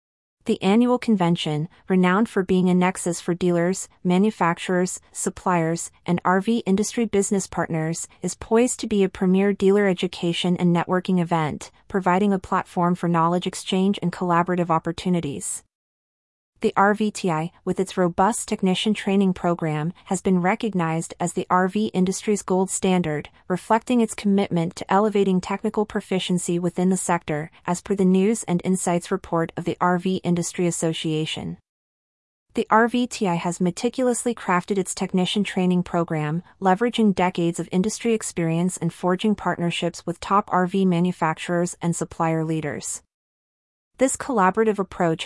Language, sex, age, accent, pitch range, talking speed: English, female, 30-49, American, 175-200 Hz, 135 wpm